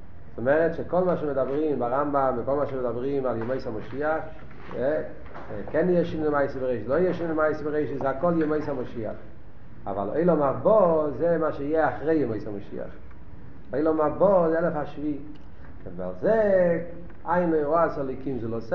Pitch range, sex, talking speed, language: 135-170 Hz, male, 85 wpm, Hebrew